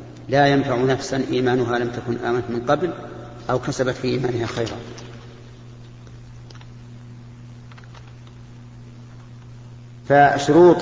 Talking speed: 85 wpm